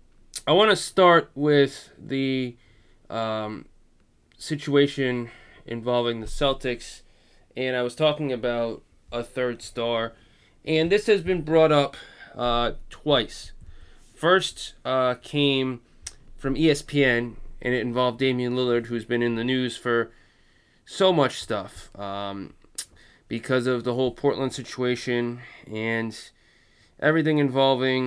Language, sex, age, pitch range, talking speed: English, male, 20-39, 115-140 Hz, 120 wpm